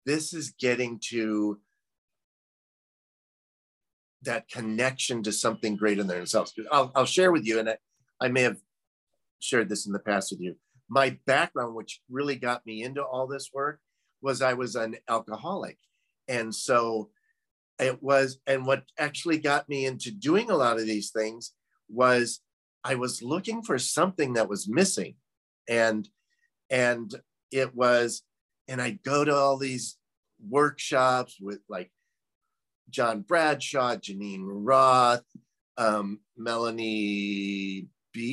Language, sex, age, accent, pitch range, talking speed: English, male, 50-69, American, 110-140 Hz, 140 wpm